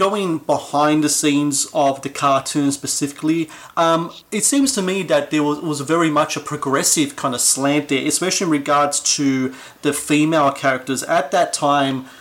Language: English